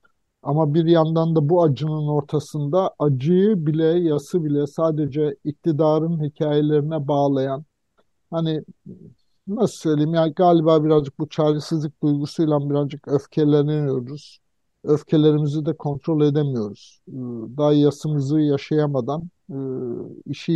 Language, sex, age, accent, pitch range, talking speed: Turkish, male, 50-69, native, 140-165 Hz, 100 wpm